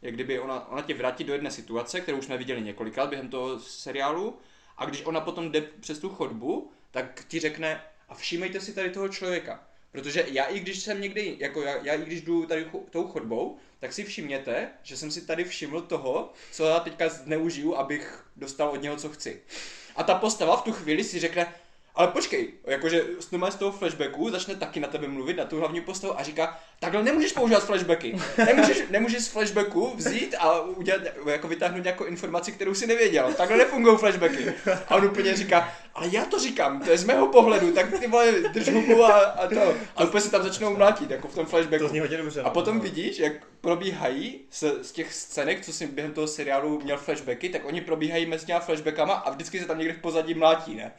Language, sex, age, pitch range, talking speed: Czech, male, 20-39, 155-195 Hz, 205 wpm